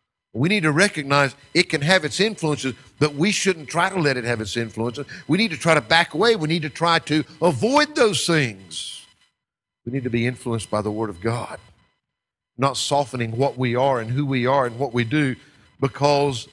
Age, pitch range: 50-69, 115-155 Hz